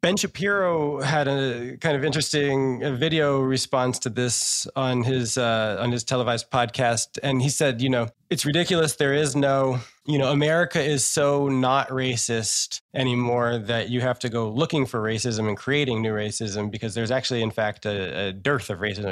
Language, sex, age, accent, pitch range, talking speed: English, male, 20-39, American, 120-150 Hz, 180 wpm